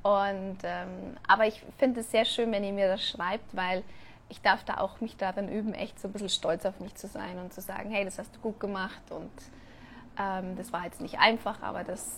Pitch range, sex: 200-240 Hz, female